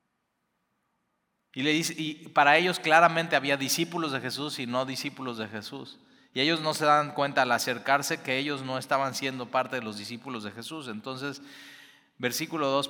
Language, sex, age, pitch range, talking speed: Spanish, male, 30-49, 130-160 Hz, 175 wpm